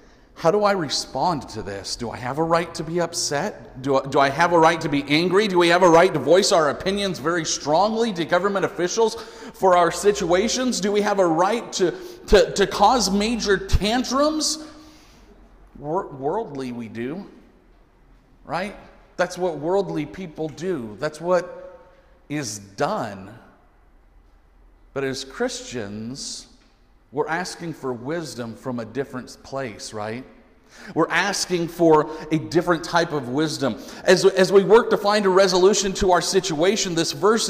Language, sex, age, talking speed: English, male, 50-69, 155 wpm